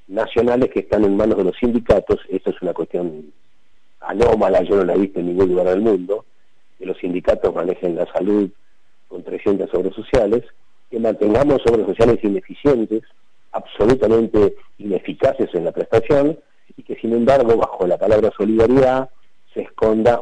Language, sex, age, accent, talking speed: Spanish, male, 40-59, Argentinian, 155 wpm